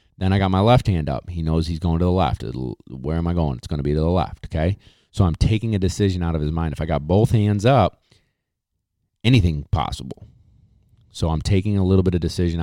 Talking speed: 240 wpm